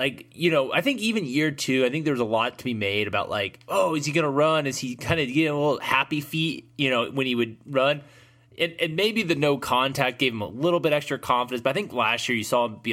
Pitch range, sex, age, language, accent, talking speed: 115-145 Hz, male, 20-39, English, American, 290 wpm